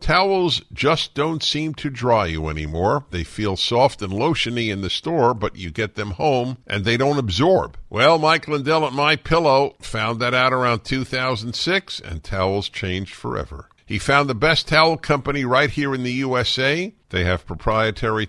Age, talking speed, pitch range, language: 50-69, 175 wpm, 100-140 Hz, English